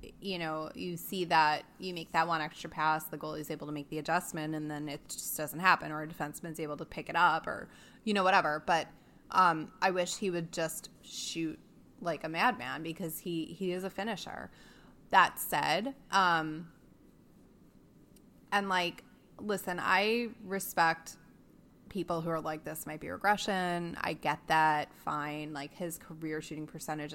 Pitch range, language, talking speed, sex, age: 155-185 Hz, English, 170 wpm, female, 20-39